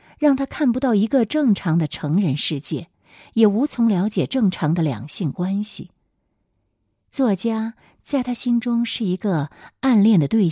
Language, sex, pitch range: Chinese, female, 155-235 Hz